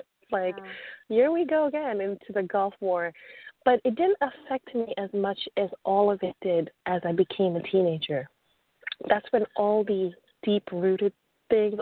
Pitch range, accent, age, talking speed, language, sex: 175-215 Hz, American, 30-49, 170 wpm, English, female